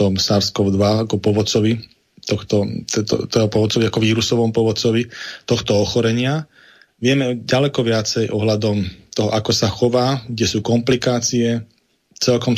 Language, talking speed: Slovak, 120 wpm